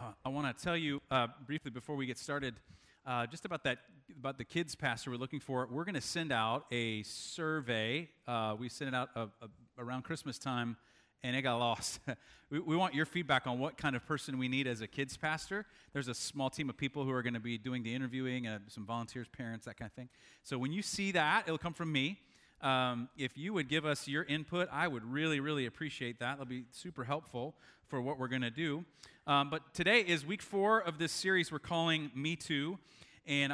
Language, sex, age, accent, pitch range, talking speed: English, male, 30-49, American, 120-155 Hz, 225 wpm